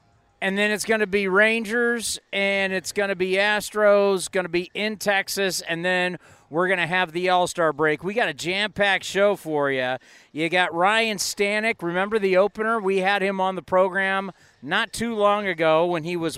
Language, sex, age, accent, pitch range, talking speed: English, male, 40-59, American, 170-205 Hz, 200 wpm